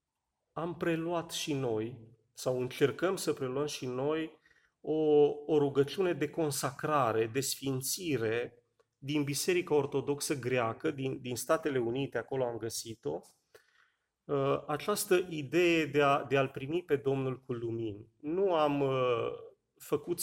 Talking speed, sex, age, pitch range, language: 120 wpm, male, 30-49, 135-170 Hz, Romanian